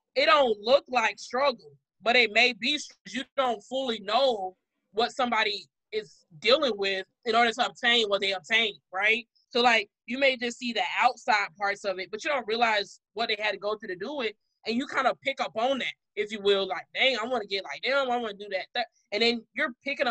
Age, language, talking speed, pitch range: 20-39, English, 235 wpm, 200-250 Hz